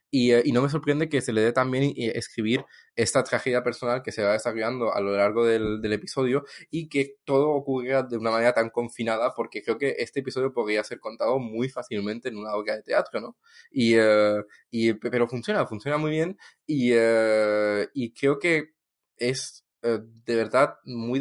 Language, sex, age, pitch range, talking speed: English, male, 20-39, 110-135 Hz, 190 wpm